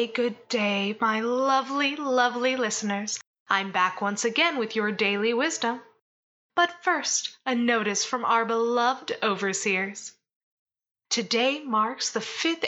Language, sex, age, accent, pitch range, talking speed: English, female, 20-39, American, 220-285 Hz, 125 wpm